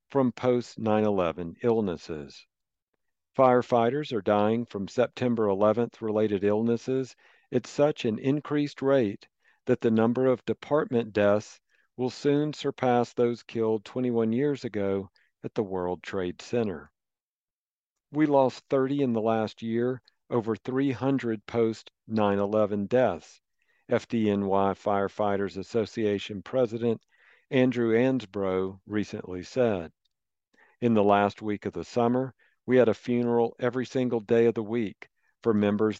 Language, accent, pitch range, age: English, American, 105-125 Hz, 50-69